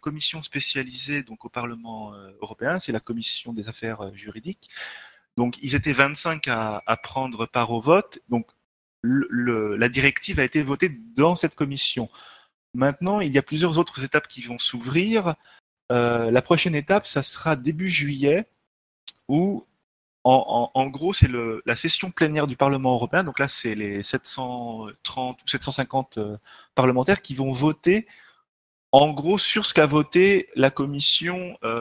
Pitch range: 120-155 Hz